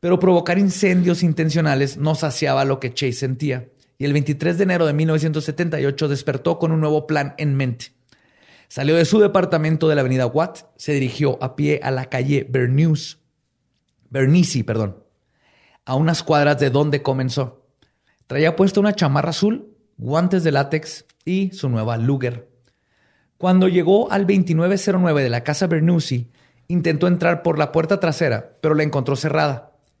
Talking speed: 155 wpm